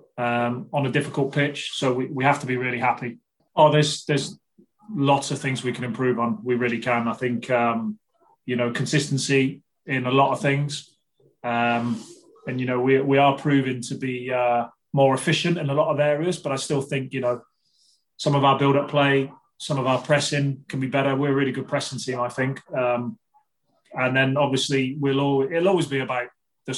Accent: British